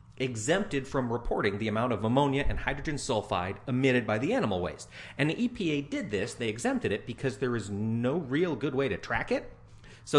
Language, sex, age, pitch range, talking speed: English, male, 40-59, 110-135 Hz, 200 wpm